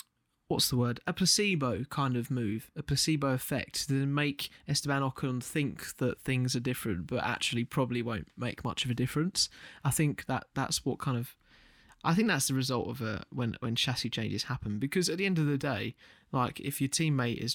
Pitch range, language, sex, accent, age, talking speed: 120-155 Hz, English, male, British, 20-39, 205 wpm